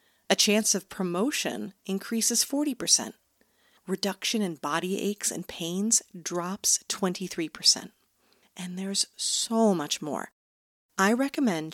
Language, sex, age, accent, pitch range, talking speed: English, female, 40-59, American, 160-200 Hz, 105 wpm